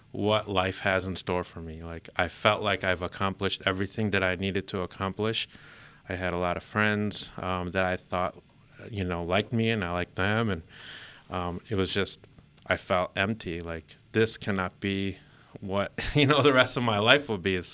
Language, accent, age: English, American, 30-49